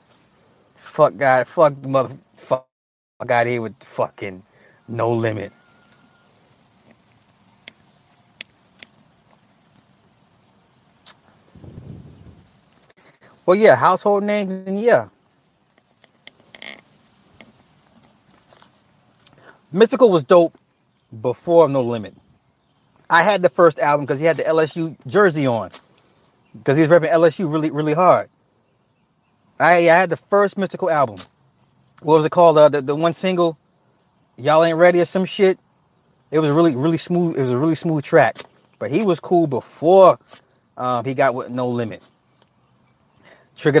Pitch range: 135-170 Hz